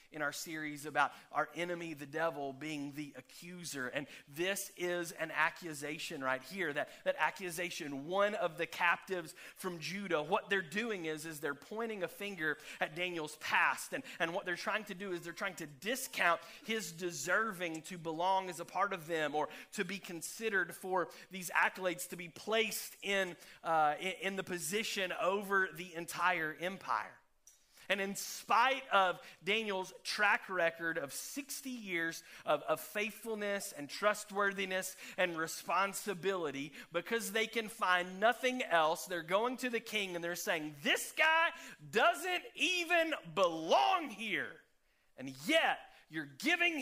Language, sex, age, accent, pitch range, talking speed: English, male, 30-49, American, 165-210 Hz, 155 wpm